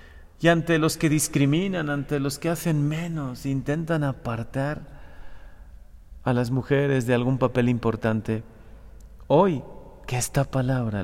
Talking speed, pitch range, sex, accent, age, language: 125 wpm, 80-140 Hz, male, Mexican, 40-59, Spanish